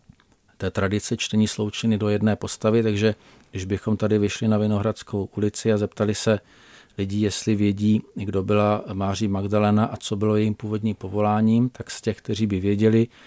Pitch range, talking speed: 100-115 Hz, 165 wpm